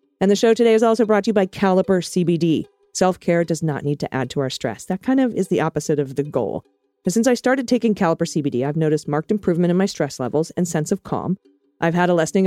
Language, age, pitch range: English, 40-59, 150-200 Hz